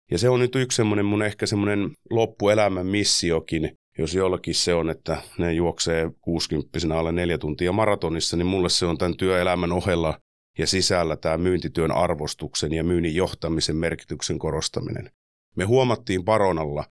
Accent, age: native, 30-49